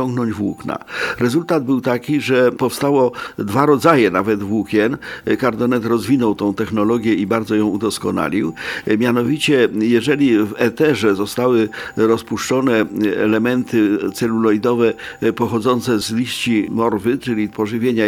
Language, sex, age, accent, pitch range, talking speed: Polish, male, 50-69, native, 110-130 Hz, 105 wpm